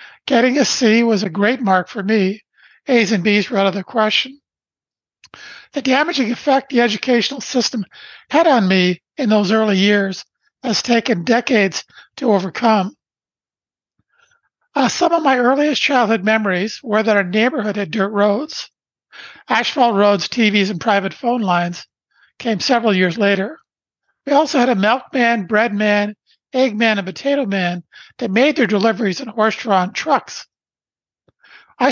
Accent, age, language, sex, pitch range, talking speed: American, 50-69, English, male, 205-250 Hz, 145 wpm